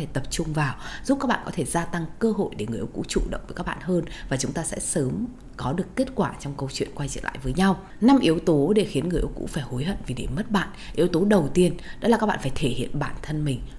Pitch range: 140-195 Hz